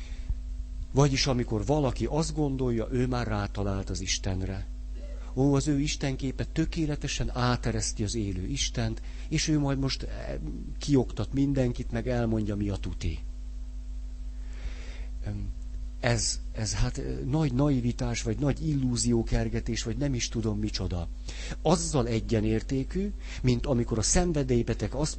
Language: Hungarian